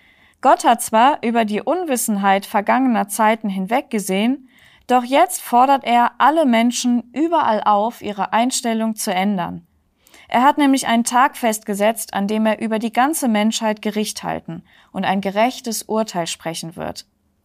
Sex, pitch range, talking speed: female, 205-245 Hz, 145 wpm